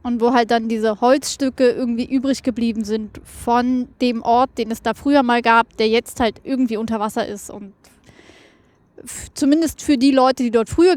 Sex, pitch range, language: female, 230-265 Hz, German